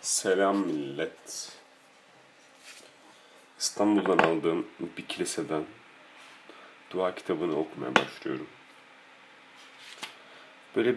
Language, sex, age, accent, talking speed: Turkish, male, 40-59, native, 60 wpm